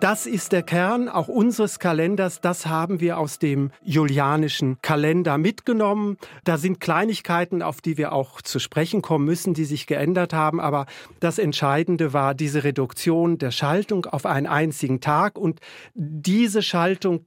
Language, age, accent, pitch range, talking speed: German, 40-59, German, 150-185 Hz, 155 wpm